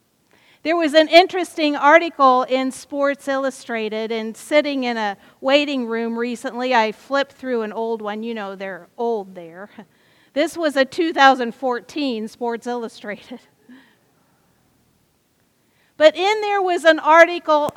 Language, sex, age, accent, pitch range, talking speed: English, female, 50-69, American, 240-320 Hz, 130 wpm